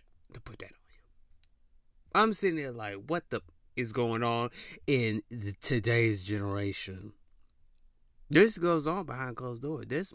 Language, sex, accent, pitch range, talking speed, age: English, male, American, 105-140 Hz, 155 wpm, 30-49